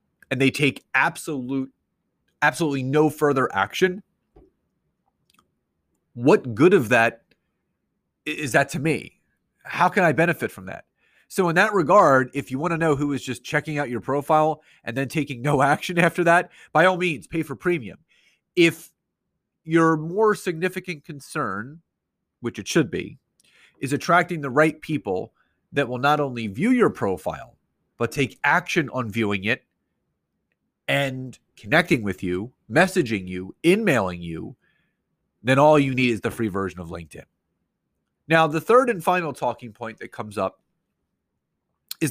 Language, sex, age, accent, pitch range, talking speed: English, male, 30-49, American, 130-165 Hz, 150 wpm